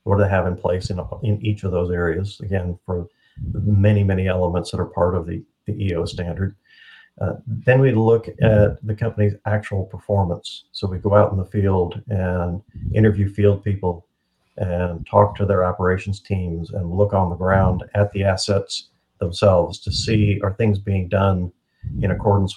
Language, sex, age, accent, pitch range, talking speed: English, male, 50-69, American, 90-105 Hz, 180 wpm